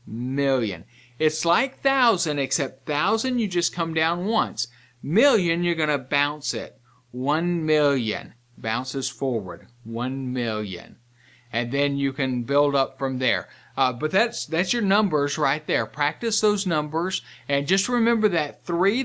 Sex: male